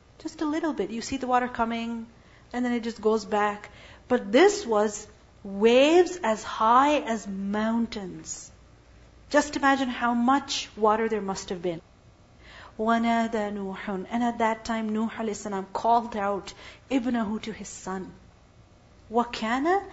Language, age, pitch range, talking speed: English, 40-59, 215-290 Hz, 140 wpm